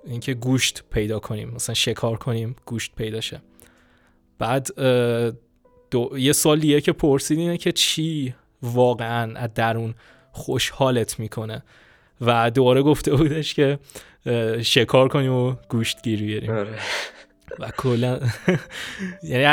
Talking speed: 115 wpm